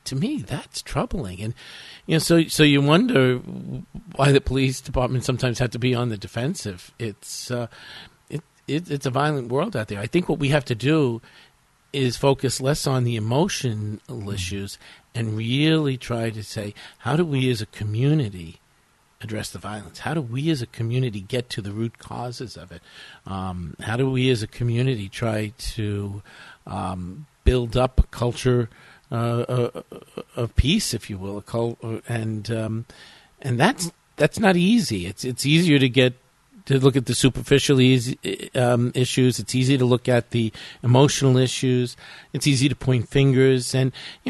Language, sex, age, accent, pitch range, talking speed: English, male, 50-69, American, 115-140 Hz, 180 wpm